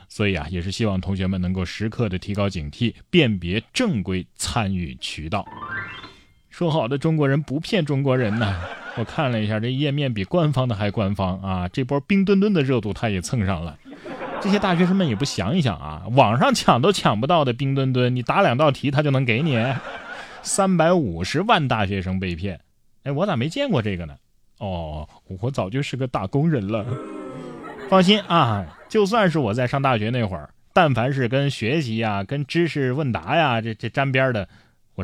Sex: male